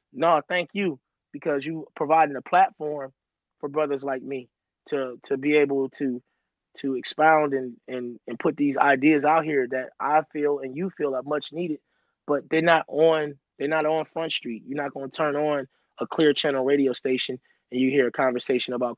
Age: 20-39